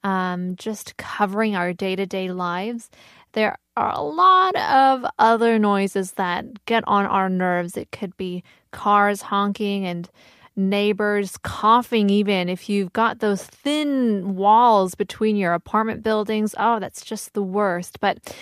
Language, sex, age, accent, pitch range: Korean, female, 20-39, American, 195-250 Hz